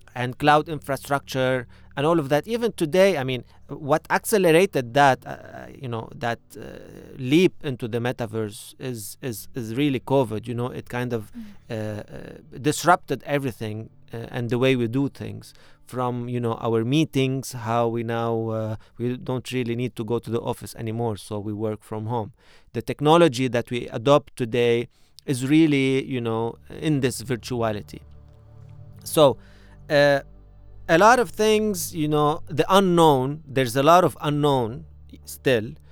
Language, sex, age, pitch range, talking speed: English, male, 30-49, 115-145 Hz, 160 wpm